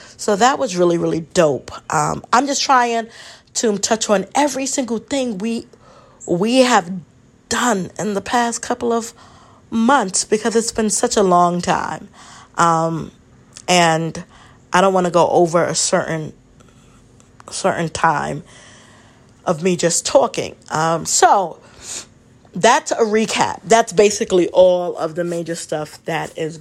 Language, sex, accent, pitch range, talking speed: English, female, American, 155-200 Hz, 140 wpm